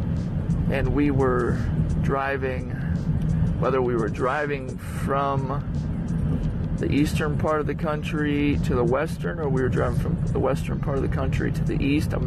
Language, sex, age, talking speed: English, male, 30-49, 160 wpm